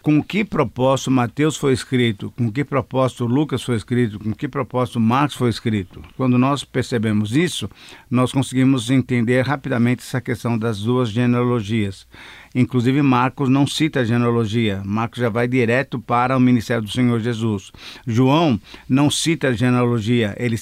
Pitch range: 120-145 Hz